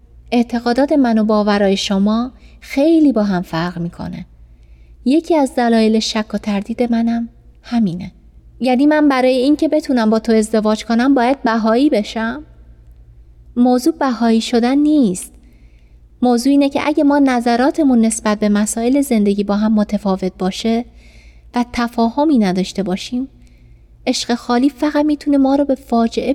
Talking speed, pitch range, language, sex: 135 wpm, 175-245 Hz, Persian, female